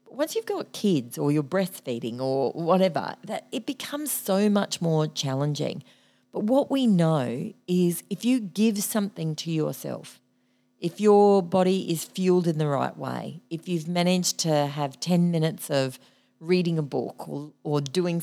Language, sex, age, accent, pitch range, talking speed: English, female, 40-59, Australian, 145-190 Hz, 165 wpm